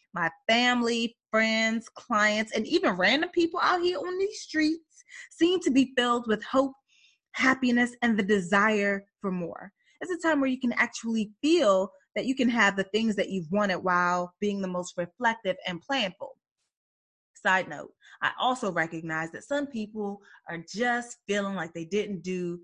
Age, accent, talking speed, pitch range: 30-49, American, 170 wpm, 180-240 Hz